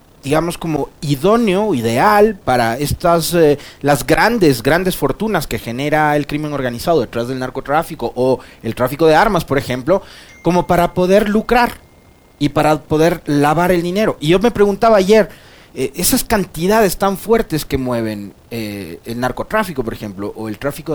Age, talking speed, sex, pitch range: 30-49, 160 wpm, male, 125-180 Hz